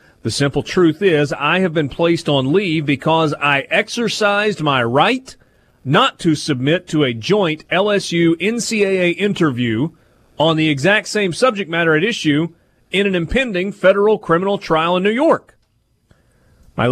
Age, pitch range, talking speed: 30-49, 130-170 Hz, 145 wpm